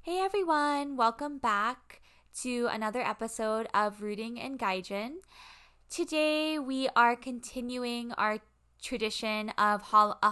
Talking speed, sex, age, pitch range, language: 110 wpm, female, 10-29, 205-250 Hz, English